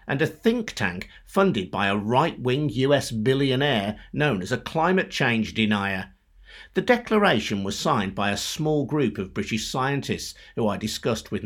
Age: 50-69